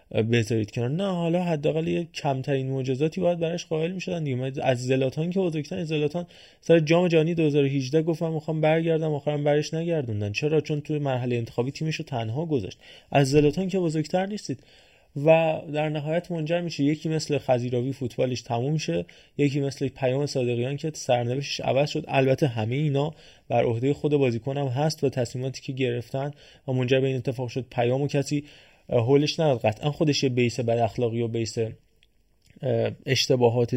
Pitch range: 120-150 Hz